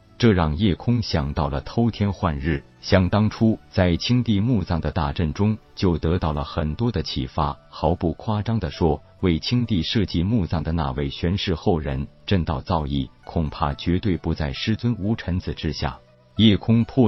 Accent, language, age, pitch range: native, Chinese, 50-69, 75-105 Hz